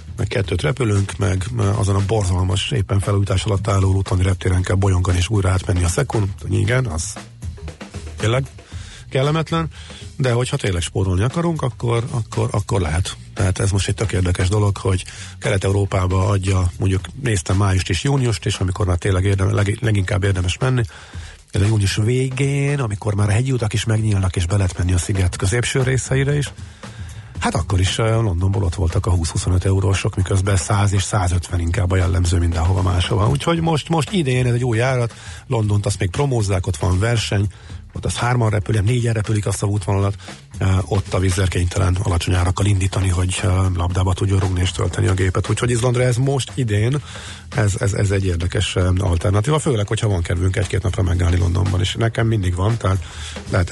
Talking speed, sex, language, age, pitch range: 180 wpm, male, Hungarian, 50-69, 95-115 Hz